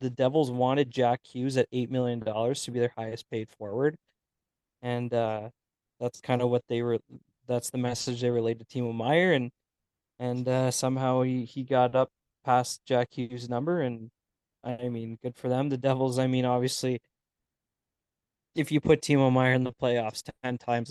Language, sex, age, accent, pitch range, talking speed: English, male, 20-39, American, 120-135 Hz, 180 wpm